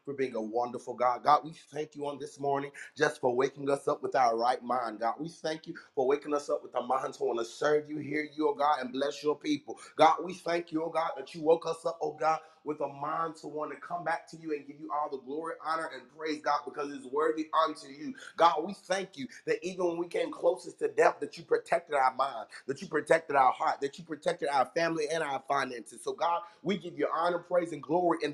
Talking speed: 260 wpm